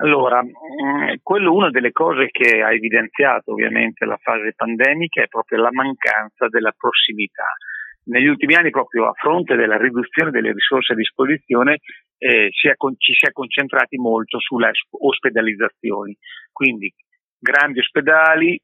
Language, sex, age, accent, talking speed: Italian, male, 40-59, native, 130 wpm